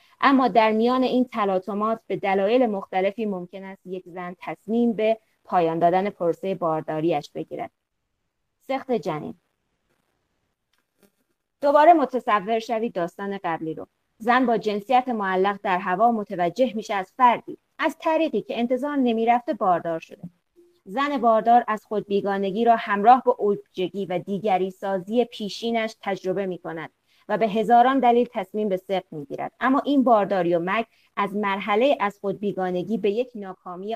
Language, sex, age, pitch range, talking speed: Persian, female, 20-39, 190-240 Hz, 140 wpm